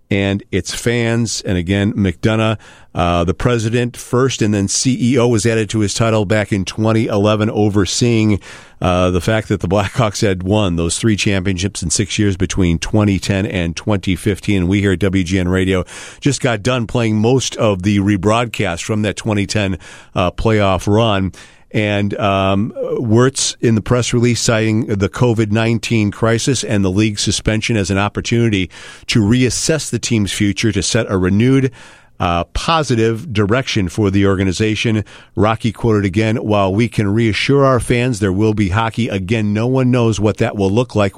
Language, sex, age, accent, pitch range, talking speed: English, male, 50-69, American, 100-115 Hz, 170 wpm